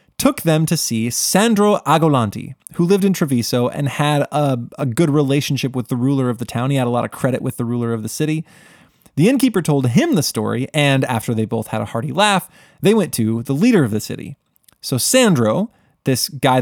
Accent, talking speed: American, 215 wpm